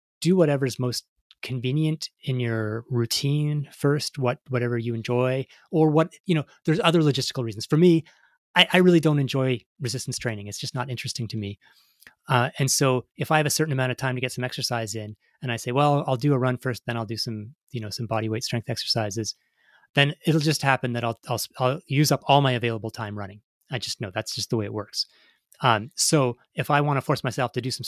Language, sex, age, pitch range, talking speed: English, male, 30-49, 110-135 Hz, 230 wpm